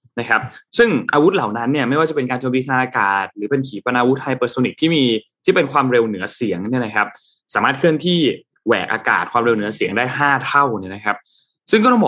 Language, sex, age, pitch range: Thai, male, 20-39, 115-170 Hz